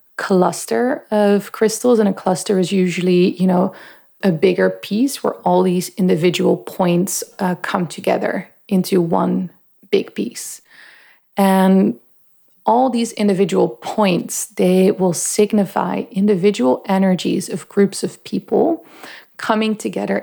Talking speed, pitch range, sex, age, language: 120 wpm, 180-205 Hz, female, 30-49, English